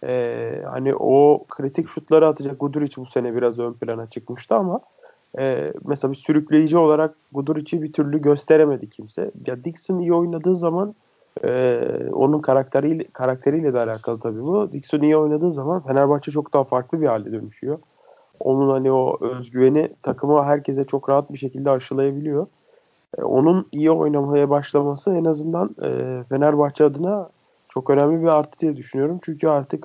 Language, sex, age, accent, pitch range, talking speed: Turkish, male, 40-59, native, 135-155 Hz, 155 wpm